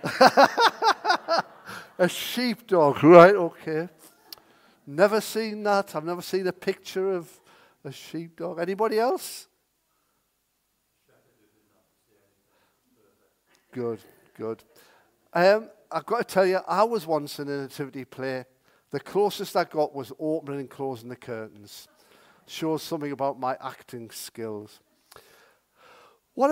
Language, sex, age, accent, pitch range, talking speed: English, male, 50-69, British, 145-205 Hz, 110 wpm